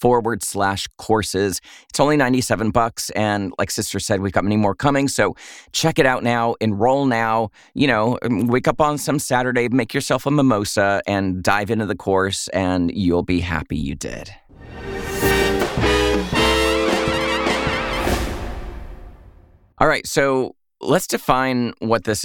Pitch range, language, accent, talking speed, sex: 95-120 Hz, English, American, 140 wpm, male